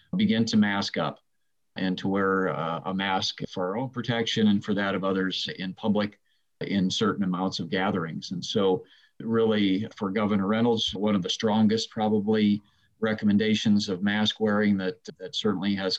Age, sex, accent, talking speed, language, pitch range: 40-59, male, American, 170 wpm, English, 95-115 Hz